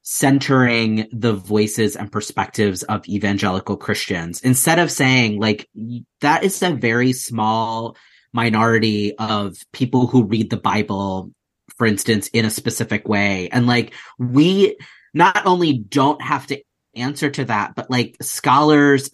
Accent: American